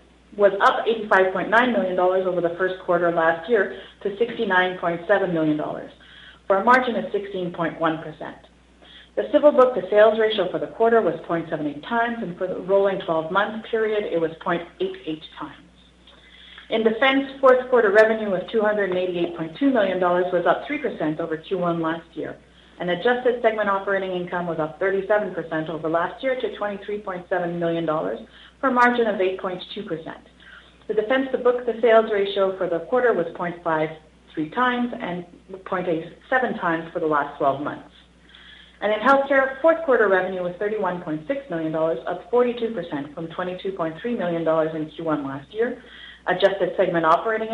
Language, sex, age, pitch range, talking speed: English, female, 40-59, 165-225 Hz, 145 wpm